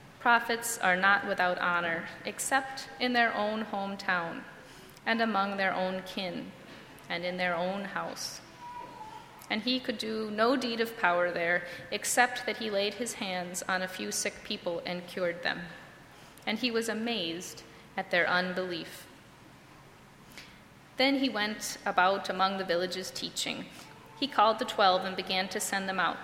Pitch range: 185-235 Hz